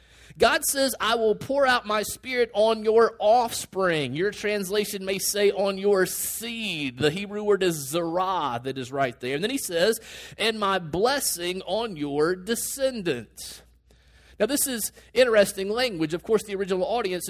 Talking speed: 165 wpm